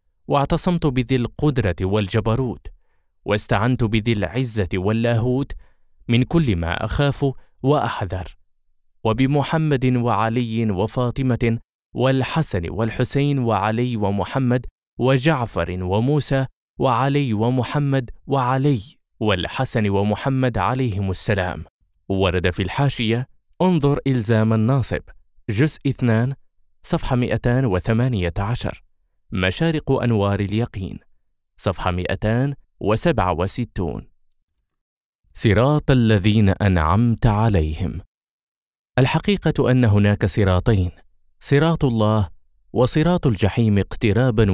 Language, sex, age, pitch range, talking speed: Arabic, male, 20-39, 95-130 Hz, 80 wpm